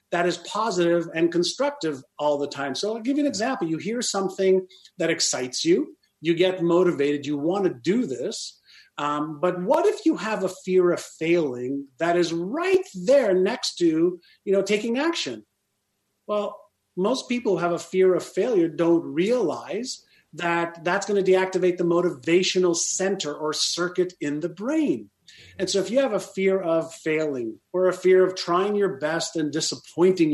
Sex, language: male, English